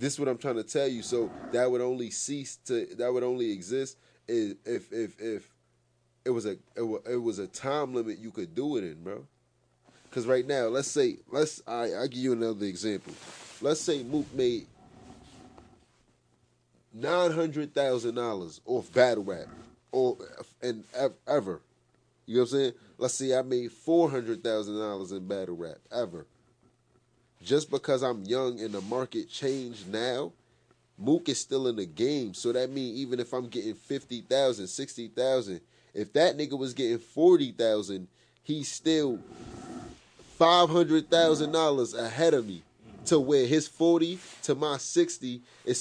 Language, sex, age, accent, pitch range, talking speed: English, male, 30-49, American, 115-150 Hz, 170 wpm